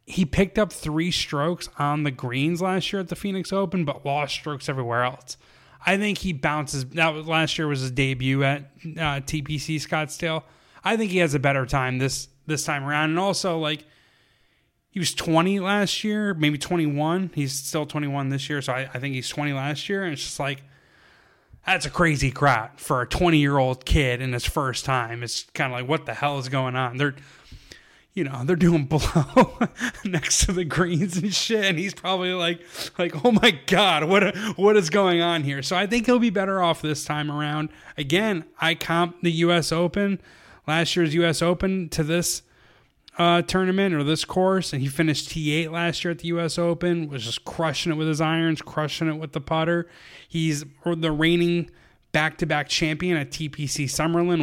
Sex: male